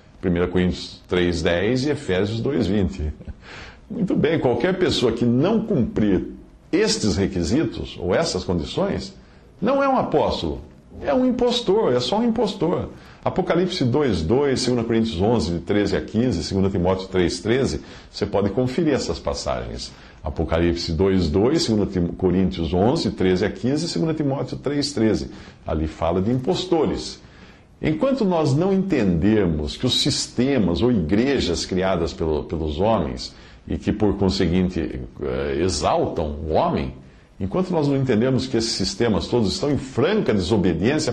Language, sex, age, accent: English, male, 50-69, Brazilian